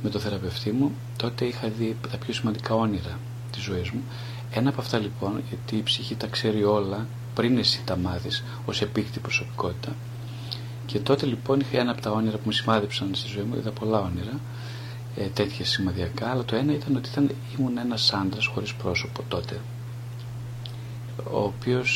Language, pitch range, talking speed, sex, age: Greek, 110-125 Hz, 175 wpm, male, 40-59